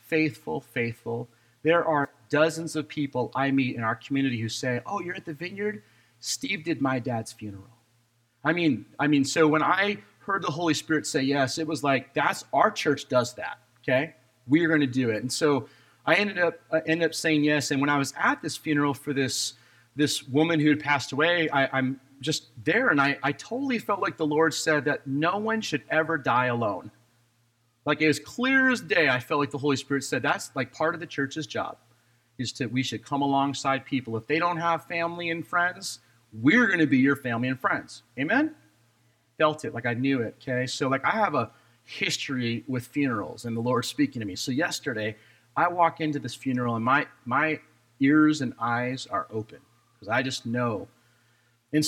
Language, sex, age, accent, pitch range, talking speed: English, male, 30-49, American, 120-160 Hz, 210 wpm